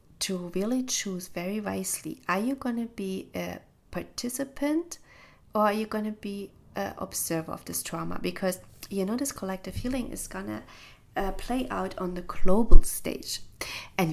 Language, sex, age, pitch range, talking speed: English, female, 30-49, 175-220 Hz, 155 wpm